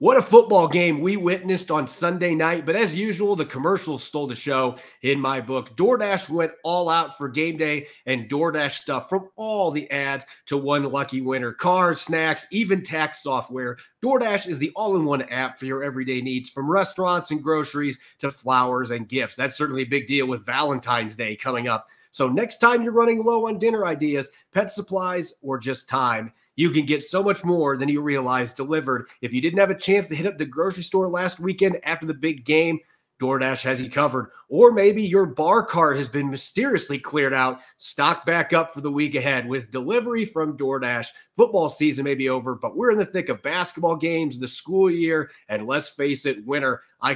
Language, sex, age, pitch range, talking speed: English, male, 30-49, 135-180 Hz, 200 wpm